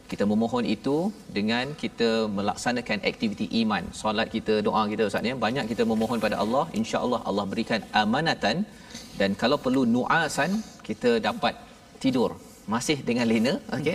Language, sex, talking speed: Malayalam, male, 145 wpm